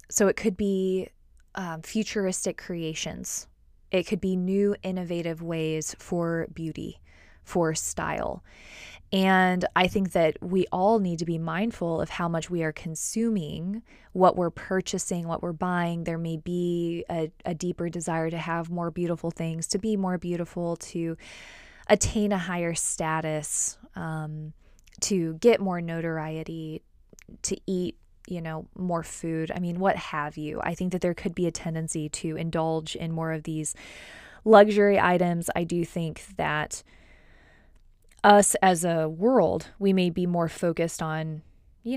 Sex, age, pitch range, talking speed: female, 20-39, 160-185 Hz, 155 wpm